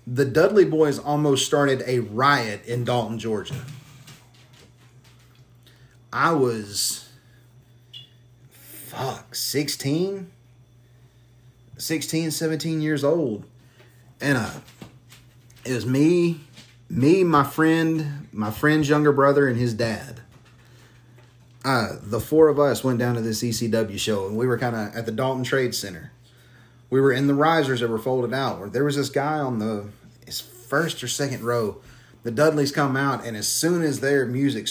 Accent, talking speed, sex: American, 145 wpm, male